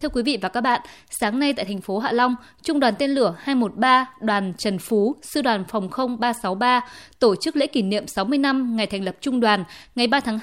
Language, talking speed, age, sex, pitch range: Vietnamese, 230 wpm, 20-39, female, 215-275 Hz